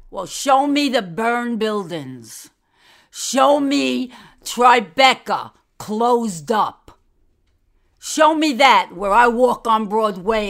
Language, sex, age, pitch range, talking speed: English, female, 50-69, 165-255 Hz, 110 wpm